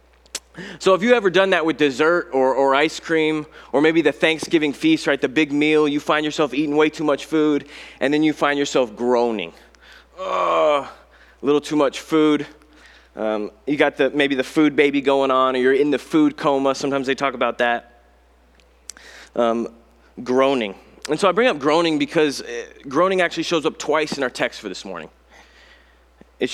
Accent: American